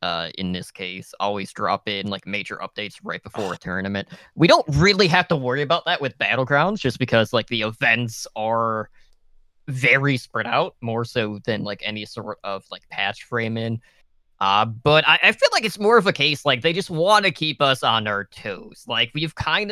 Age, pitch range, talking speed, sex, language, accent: 20-39, 115-150 Hz, 205 wpm, male, English, American